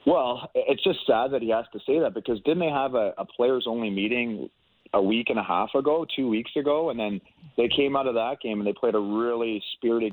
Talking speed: 245 wpm